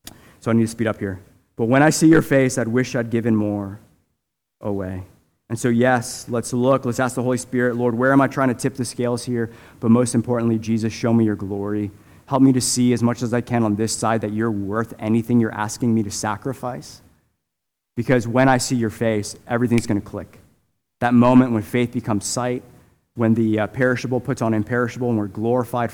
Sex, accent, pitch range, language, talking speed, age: male, American, 110-150 Hz, English, 215 wpm, 20-39